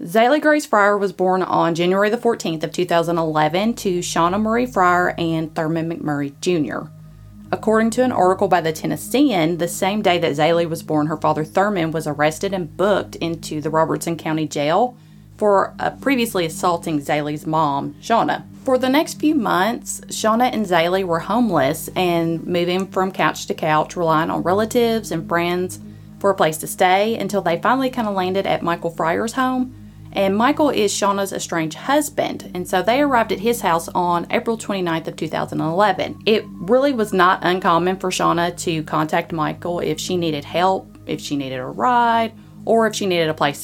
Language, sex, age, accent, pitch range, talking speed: English, female, 20-39, American, 160-215 Hz, 180 wpm